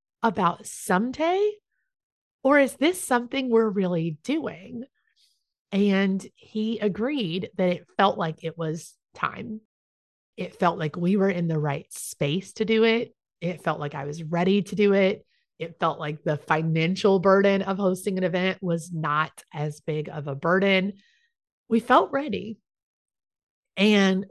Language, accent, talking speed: English, American, 150 wpm